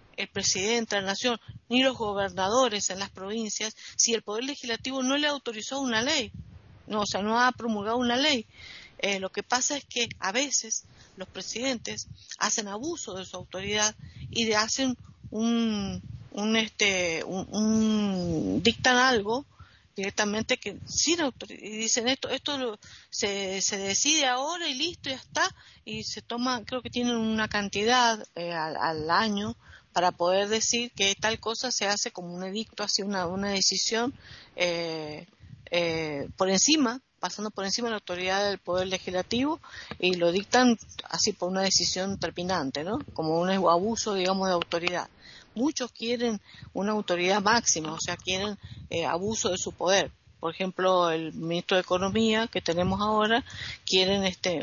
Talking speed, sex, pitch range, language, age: 165 wpm, female, 185-235 Hz, Spanish, 50-69